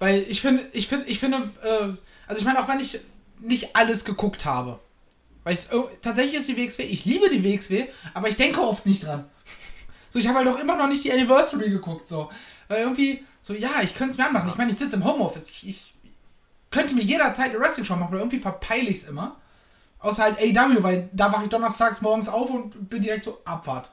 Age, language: 20-39, German